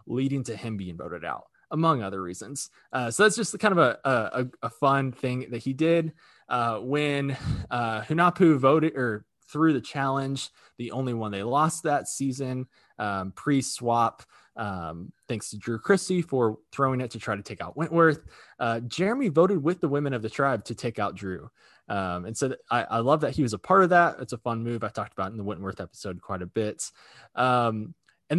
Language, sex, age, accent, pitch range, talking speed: English, male, 20-39, American, 110-155 Hz, 210 wpm